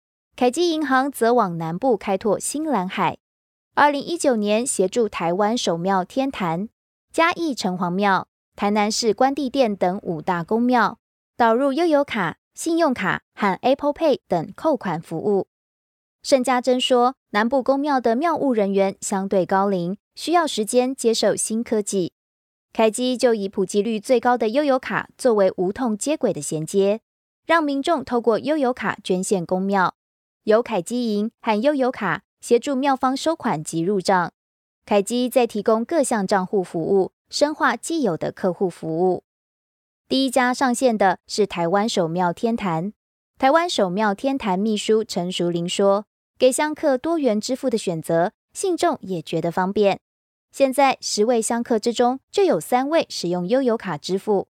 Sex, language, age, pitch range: female, Chinese, 20-39, 190-260 Hz